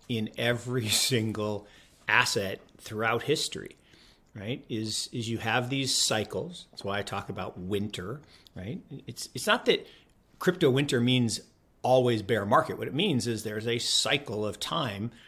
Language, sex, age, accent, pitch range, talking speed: English, male, 50-69, American, 110-130 Hz, 155 wpm